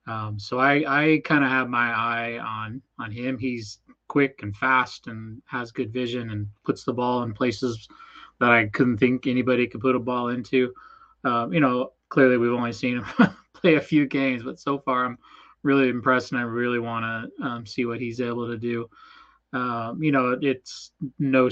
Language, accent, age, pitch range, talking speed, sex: English, American, 20-39, 115-130 Hz, 190 wpm, male